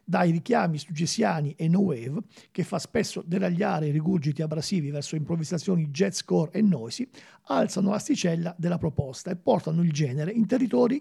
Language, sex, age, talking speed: Italian, male, 50-69, 160 wpm